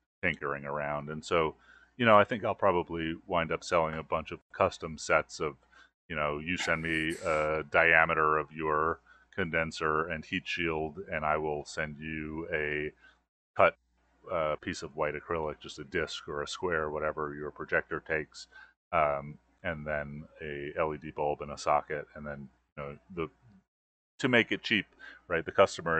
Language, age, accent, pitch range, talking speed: English, 30-49, American, 75-80 Hz, 175 wpm